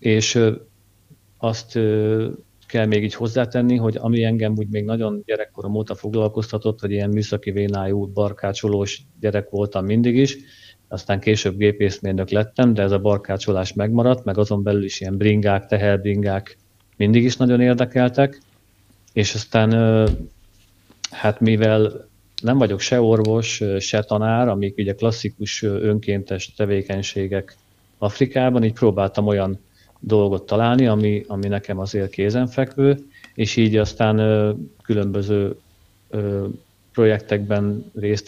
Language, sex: Hungarian, male